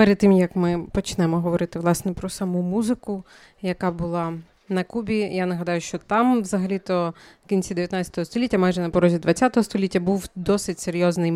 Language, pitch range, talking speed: Ukrainian, 175-205 Hz, 160 wpm